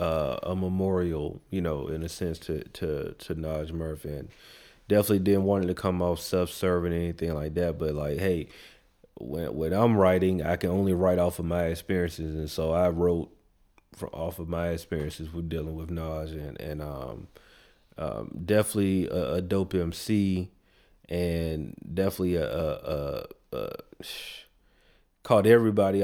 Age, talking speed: 30-49, 165 wpm